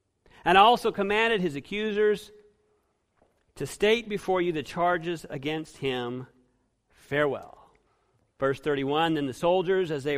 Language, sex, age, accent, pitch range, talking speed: English, male, 40-59, American, 145-195 Hz, 125 wpm